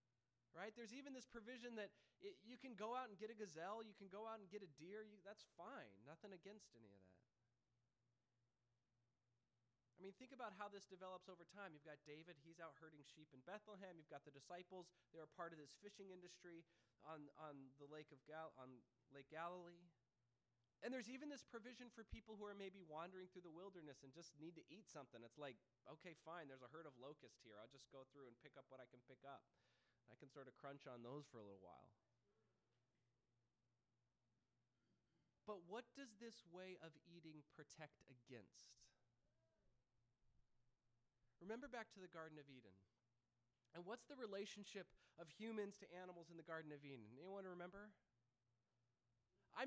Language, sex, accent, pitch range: English, male, American, 120-200 Hz